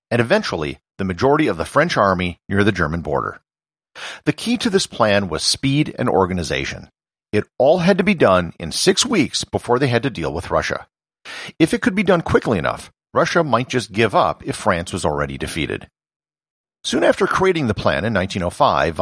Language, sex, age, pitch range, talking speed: English, male, 50-69, 95-145 Hz, 190 wpm